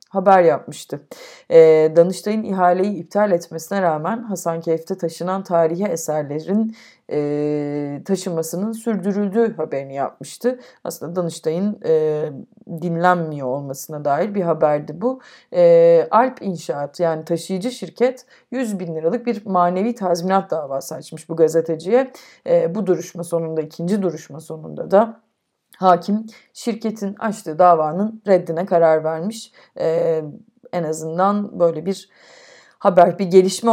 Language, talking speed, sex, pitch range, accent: Turkish, 105 wpm, female, 155-205 Hz, native